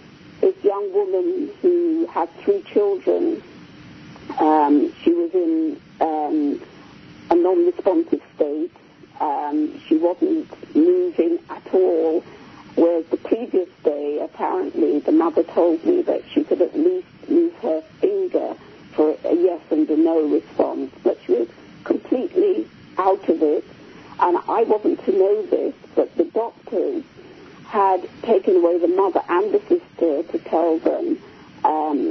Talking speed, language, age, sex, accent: 135 wpm, English, 50-69, female, British